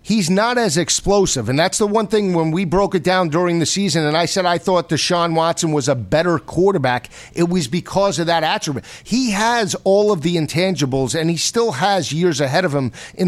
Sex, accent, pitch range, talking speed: male, American, 155-200 Hz, 220 wpm